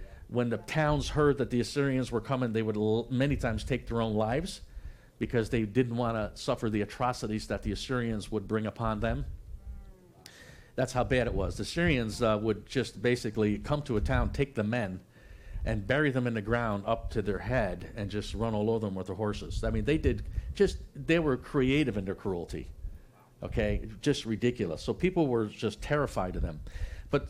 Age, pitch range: 50-69, 105-140 Hz